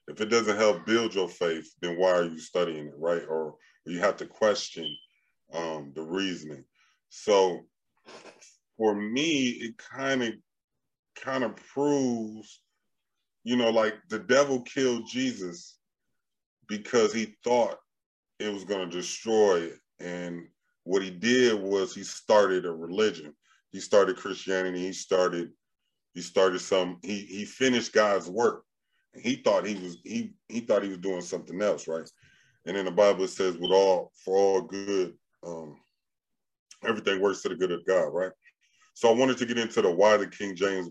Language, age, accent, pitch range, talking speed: English, 30-49, American, 90-110 Hz, 165 wpm